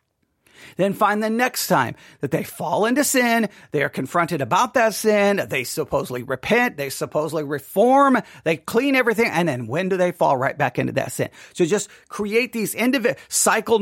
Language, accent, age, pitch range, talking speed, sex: English, American, 40-59, 165-235 Hz, 185 wpm, male